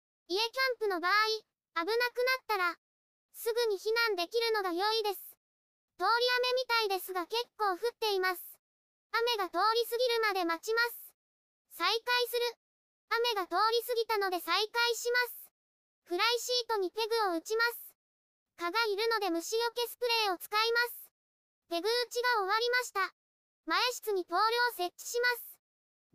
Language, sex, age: Japanese, male, 20-39